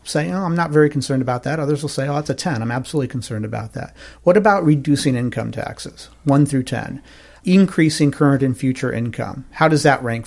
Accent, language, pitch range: American, English, 125-155 Hz